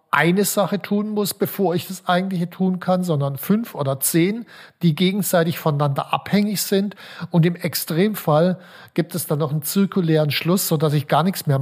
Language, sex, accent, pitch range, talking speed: German, male, German, 145-180 Hz, 180 wpm